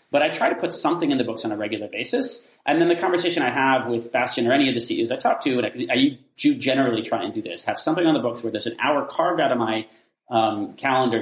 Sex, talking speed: male, 285 wpm